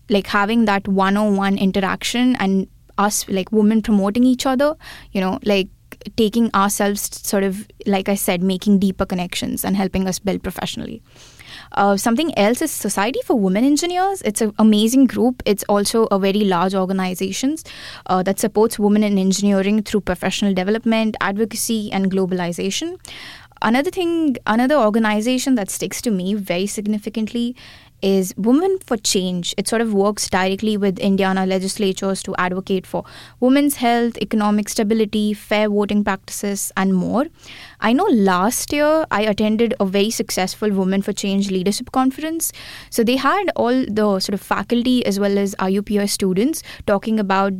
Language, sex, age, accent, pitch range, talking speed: English, female, 20-39, Indian, 195-230 Hz, 155 wpm